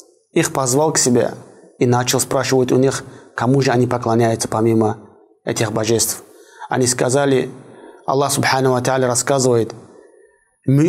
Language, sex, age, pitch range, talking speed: Russian, male, 20-39, 120-140 Hz, 125 wpm